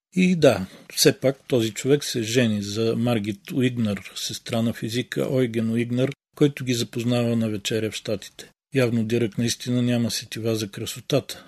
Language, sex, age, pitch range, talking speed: Bulgarian, male, 40-59, 110-125 Hz, 155 wpm